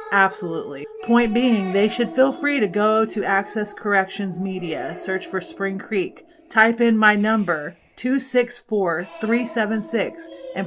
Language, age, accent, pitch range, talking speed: English, 30-49, American, 185-225 Hz, 130 wpm